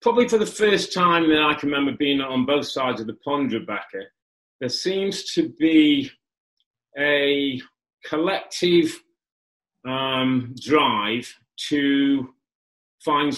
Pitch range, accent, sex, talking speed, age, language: 125-170 Hz, British, male, 120 wpm, 40-59, English